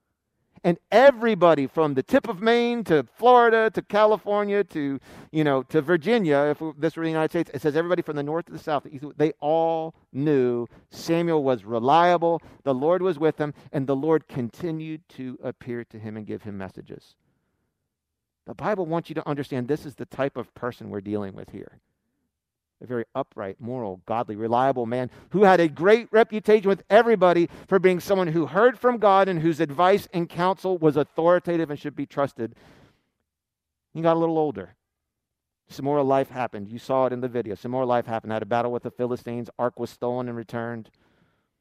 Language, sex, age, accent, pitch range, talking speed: English, male, 50-69, American, 120-170 Hz, 195 wpm